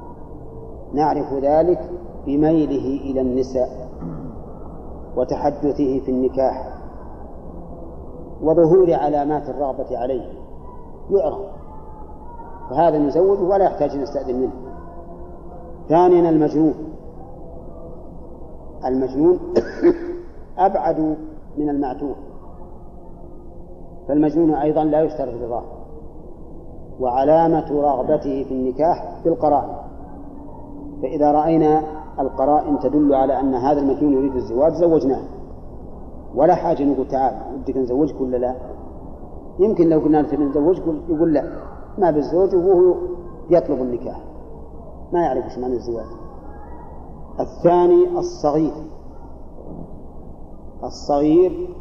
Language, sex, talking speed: Arabic, male, 85 wpm